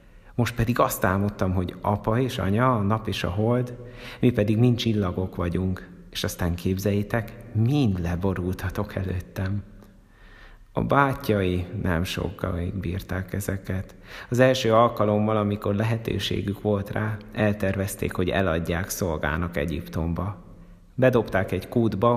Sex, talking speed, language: male, 125 wpm, Hungarian